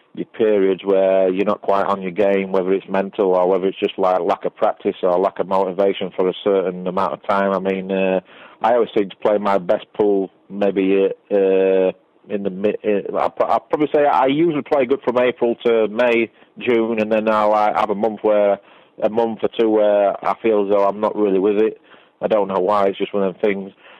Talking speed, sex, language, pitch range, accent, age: 230 wpm, male, English, 95-105 Hz, British, 30-49